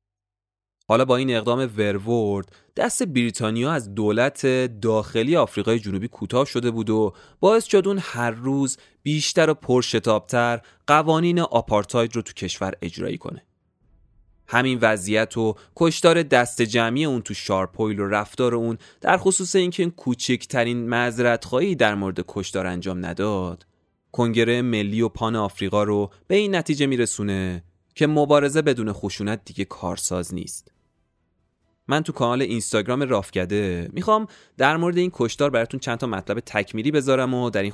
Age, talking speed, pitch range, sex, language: 30-49, 145 wpm, 105-135 Hz, male, Persian